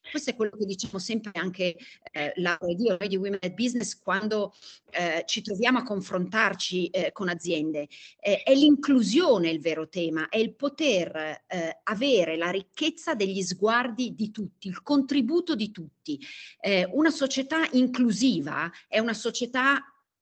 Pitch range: 180-255 Hz